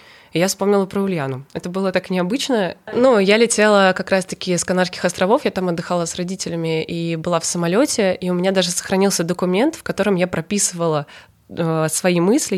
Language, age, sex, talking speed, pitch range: Russian, 20-39, female, 175 wpm, 165-195 Hz